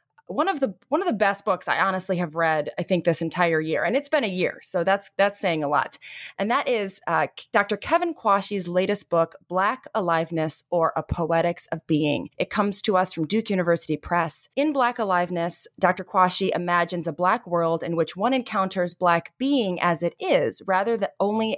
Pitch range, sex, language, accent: 165-205 Hz, female, English, American